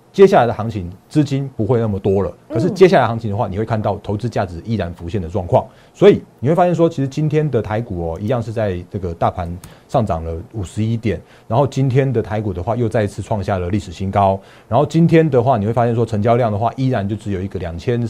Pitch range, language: 95-130 Hz, Chinese